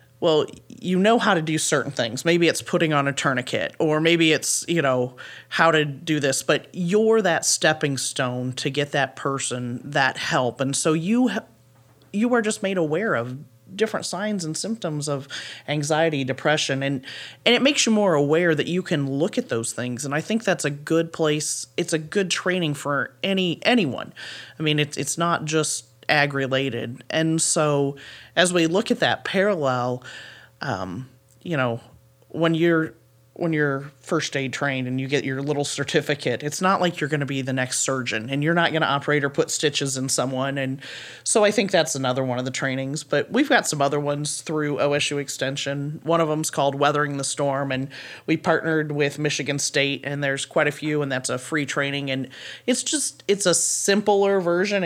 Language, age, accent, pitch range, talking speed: English, 30-49, American, 135-165 Hz, 195 wpm